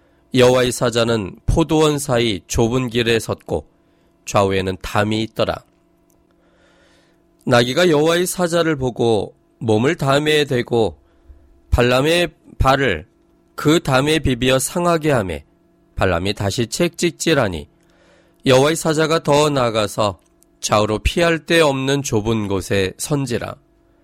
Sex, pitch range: male, 110-155 Hz